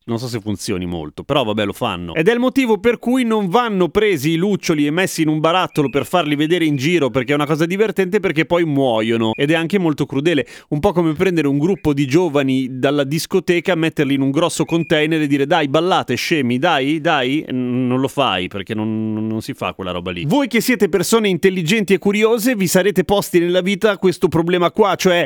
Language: Italian